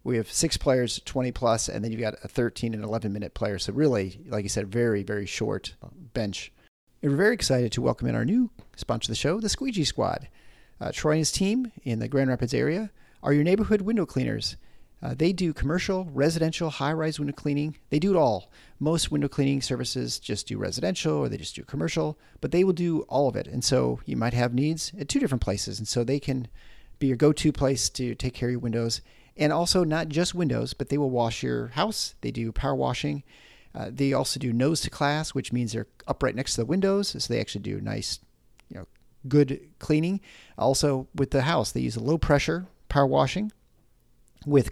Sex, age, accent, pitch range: male, 40-59, American, 110-150 Hz